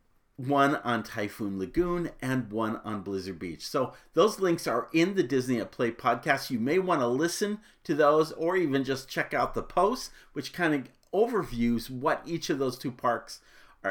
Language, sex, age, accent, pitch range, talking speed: English, male, 50-69, American, 120-170 Hz, 185 wpm